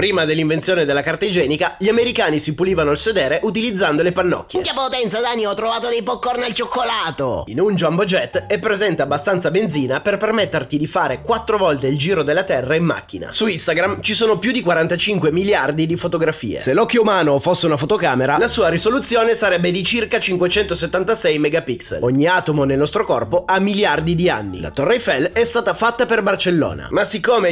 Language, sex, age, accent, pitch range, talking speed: Italian, male, 30-49, native, 160-215 Hz, 190 wpm